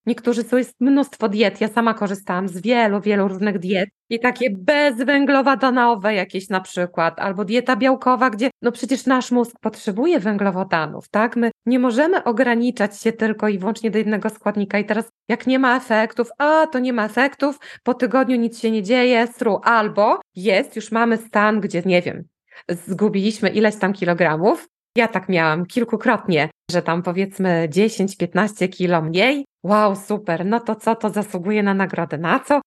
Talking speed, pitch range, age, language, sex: 170 wpm, 200-240 Hz, 20-39, Polish, female